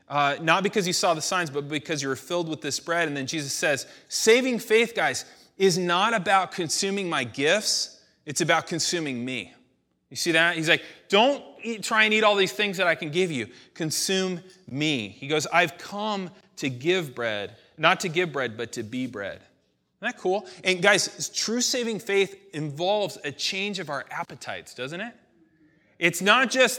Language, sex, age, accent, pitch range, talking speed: English, male, 30-49, American, 155-210 Hz, 190 wpm